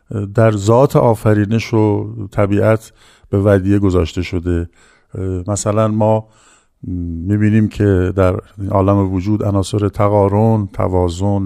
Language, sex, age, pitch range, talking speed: Persian, male, 50-69, 100-120 Hz, 100 wpm